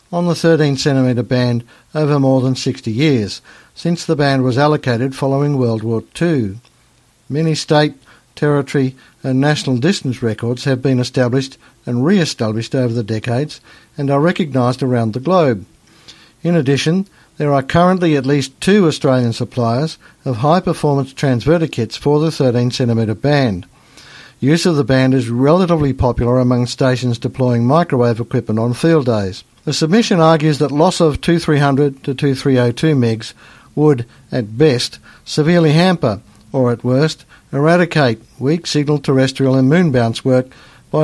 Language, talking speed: English, 145 wpm